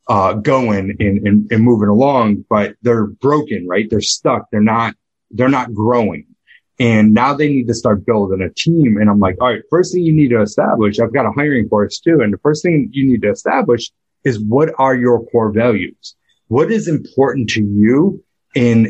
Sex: male